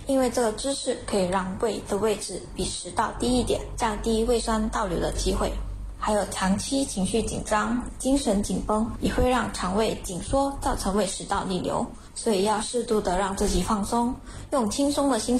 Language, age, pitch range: Chinese, 10-29, 200-250 Hz